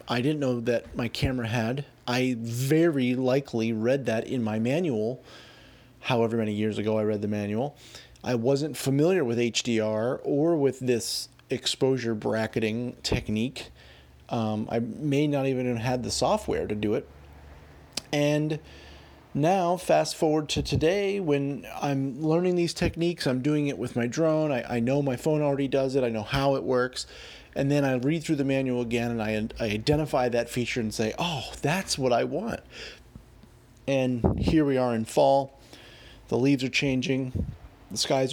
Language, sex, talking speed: English, male, 170 wpm